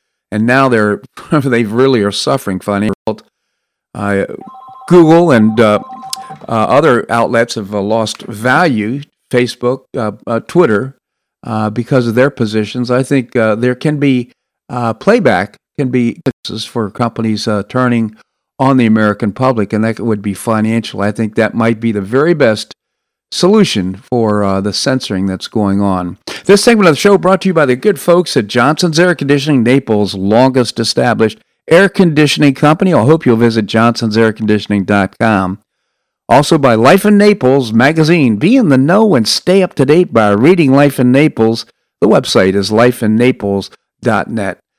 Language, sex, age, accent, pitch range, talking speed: English, male, 50-69, American, 110-150 Hz, 155 wpm